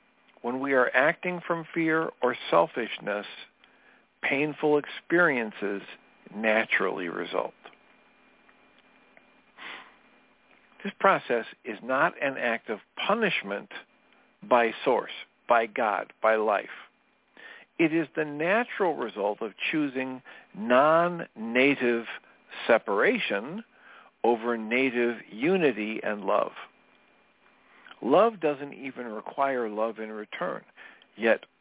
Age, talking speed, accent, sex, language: 50-69, 90 wpm, American, male, English